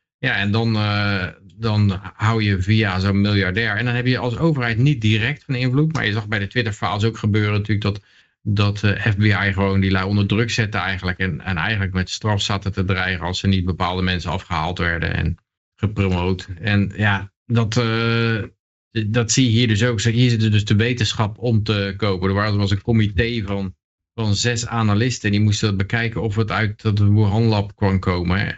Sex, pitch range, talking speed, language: male, 95-115 Hz, 200 wpm, Dutch